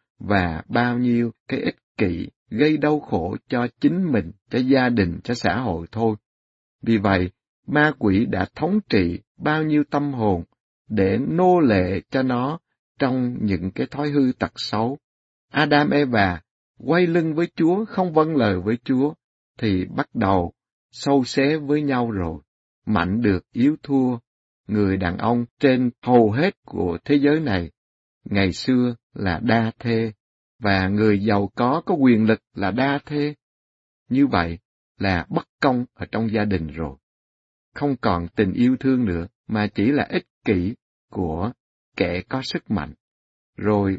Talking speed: 160 wpm